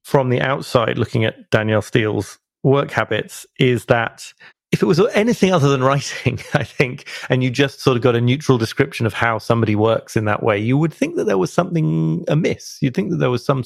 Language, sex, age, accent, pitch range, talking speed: English, male, 30-49, British, 110-135 Hz, 220 wpm